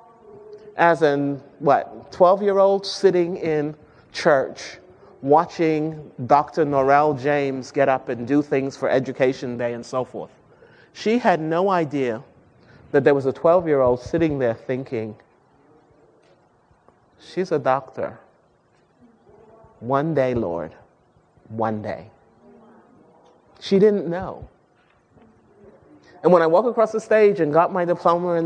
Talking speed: 120 wpm